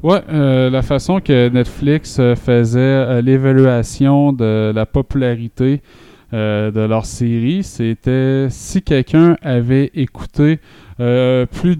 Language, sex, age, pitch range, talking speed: French, male, 20-39, 110-135 Hz, 115 wpm